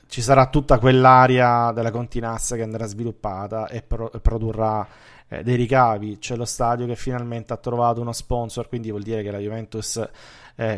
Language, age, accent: Italian, 20-39, native